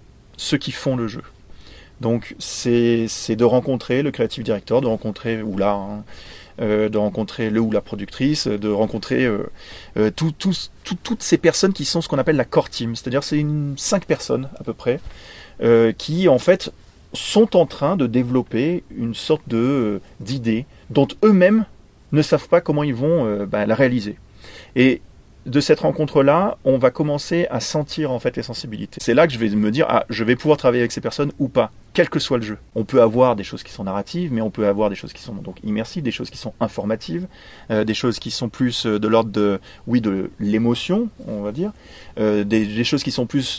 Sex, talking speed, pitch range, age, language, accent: male, 210 wpm, 105-145 Hz, 30-49, French, French